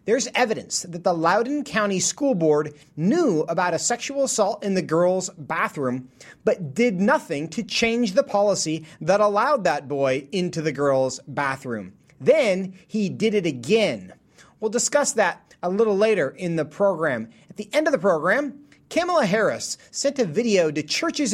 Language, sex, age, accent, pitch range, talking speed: English, male, 30-49, American, 160-250 Hz, 165 wpm